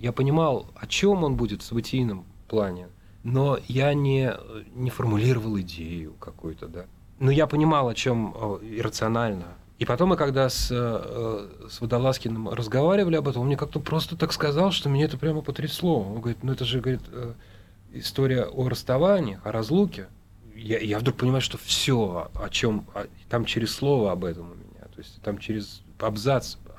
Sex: male